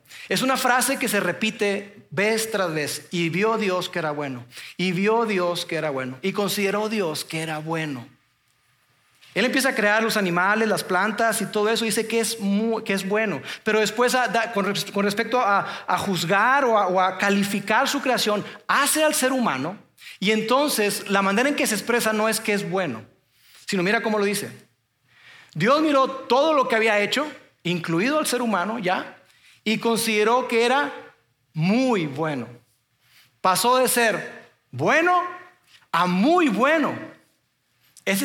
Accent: Mexican